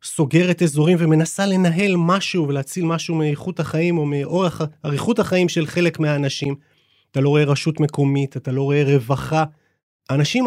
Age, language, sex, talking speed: 30-49, Hebrew, male, 150 wpm